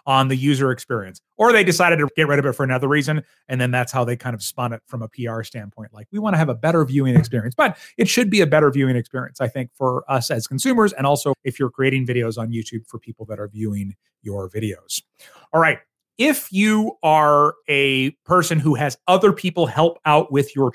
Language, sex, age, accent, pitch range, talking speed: English, male, 30-49, American, 130-170 Hz, 235 wpm